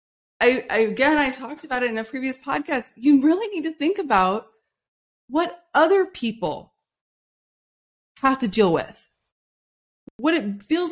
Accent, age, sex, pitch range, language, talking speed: American, 20-39, female, 210-290 Hz, English, 145 wpm